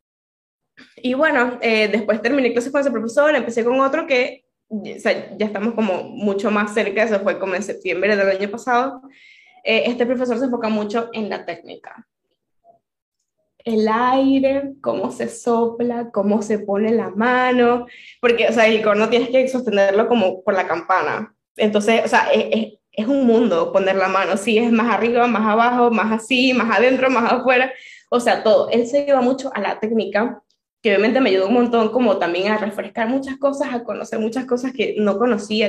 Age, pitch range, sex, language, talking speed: 10-29, 210-250 Hz, female, Spanish, 190 wpm